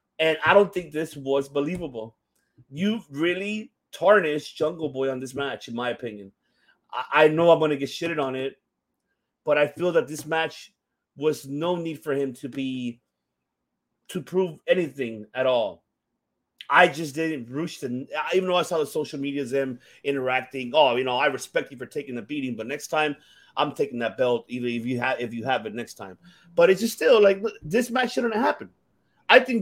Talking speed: 200 wpm